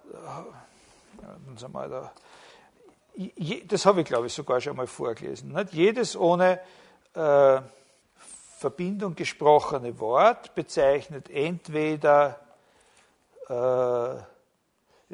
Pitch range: 135-180 Hz